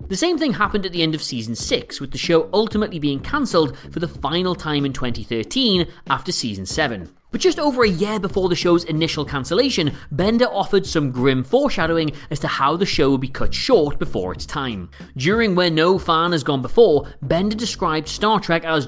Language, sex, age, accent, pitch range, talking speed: English, male, 30-49, British, 135-200 Hz, 205 wpm